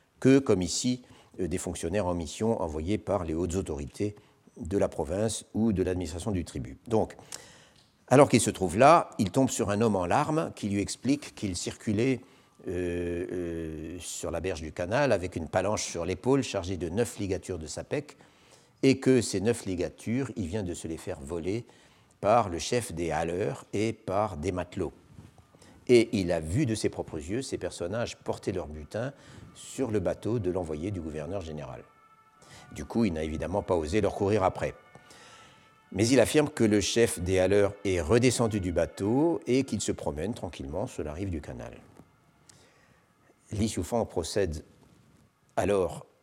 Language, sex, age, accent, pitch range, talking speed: French, male, 50-69, French, 85-115 Hz, 175 wpm